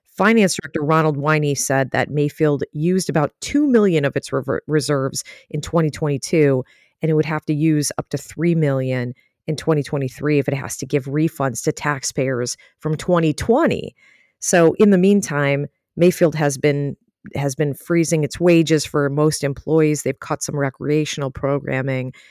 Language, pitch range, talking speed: English, 135-160 Hz, 155 wpm